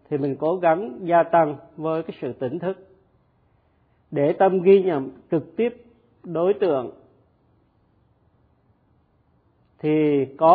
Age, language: 50-69, Vietnamese